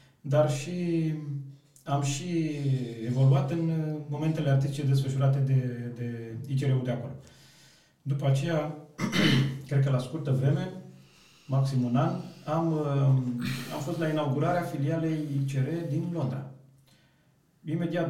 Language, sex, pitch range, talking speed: Romanian, male, 130-155 Hz, 115 wpm